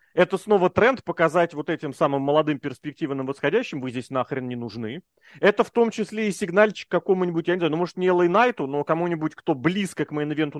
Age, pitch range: 30-49, 135-195 Hz